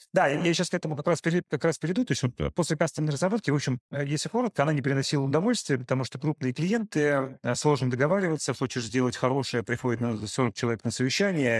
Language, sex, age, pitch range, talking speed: Russian, male, 30-49, 115-145 Hz, 190 wpm